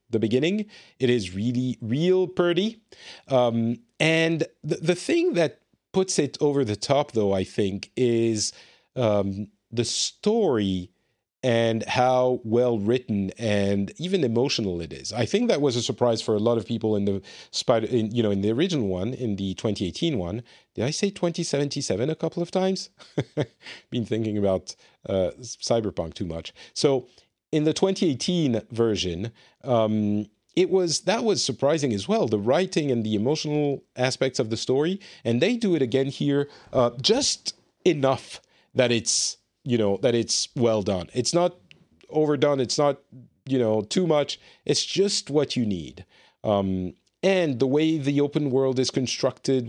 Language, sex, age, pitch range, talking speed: English, male, 40-59, 110-145 Hz, 165 wpm